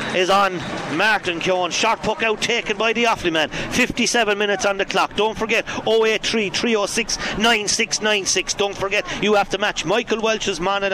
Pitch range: 185-220 Hz